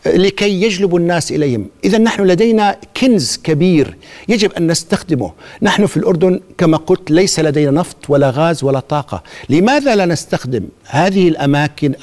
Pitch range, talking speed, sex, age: 155-205 Hz, 145 wpm, male, 50-69